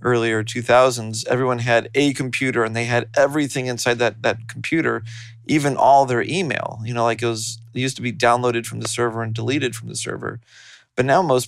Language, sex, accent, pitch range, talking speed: English, male, American, 115-125 Hz, 205 wpm